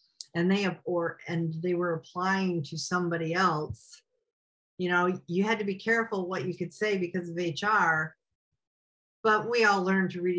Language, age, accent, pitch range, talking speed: English, 50-69, American, 155-180 Hz, 180 wpm